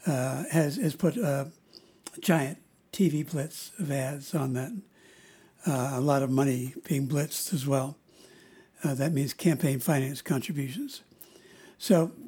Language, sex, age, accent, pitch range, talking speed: English, male, 60-79, American, 145-185 Hz, 135 wpm